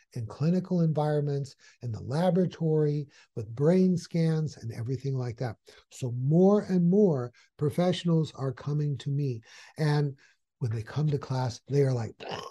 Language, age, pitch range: English, 60-79, 125-165 Hz